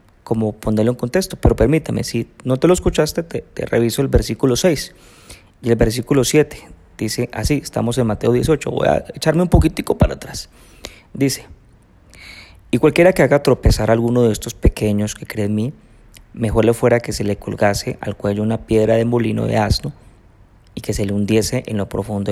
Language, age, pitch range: Spanish, 30-49, 100-130 Hz